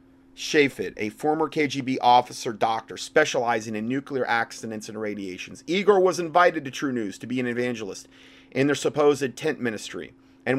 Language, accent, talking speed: English, American, 160 wpm